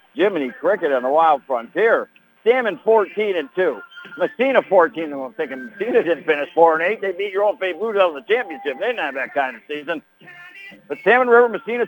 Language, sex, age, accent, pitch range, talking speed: English, male, 60-79, American, 175-235 Hz, 205 wpm